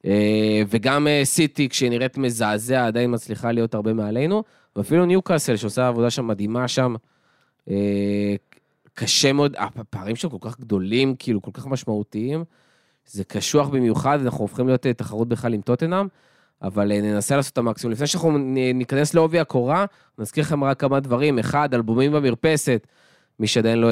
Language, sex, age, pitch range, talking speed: Hebrew, male, 20-39, 110-135 Hz, 150 wpm